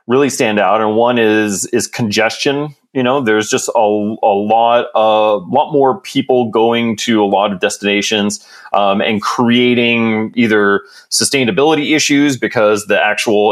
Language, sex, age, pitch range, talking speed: English, male, 30-49, 105-130 Hz, 155 wpm